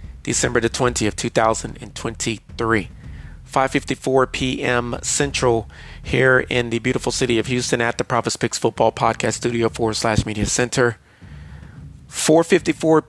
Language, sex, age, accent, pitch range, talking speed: English, male, 40-59, American, 110-130 Hz, 115 wpm